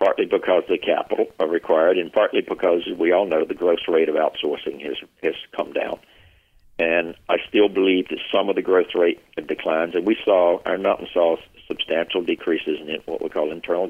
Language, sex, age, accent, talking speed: English, male, 60-79, American, 200 wpm